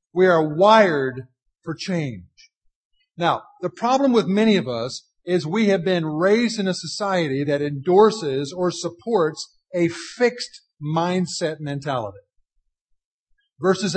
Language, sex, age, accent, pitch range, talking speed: English, male, 50-69, American, 145-195 Hz, 125 wpm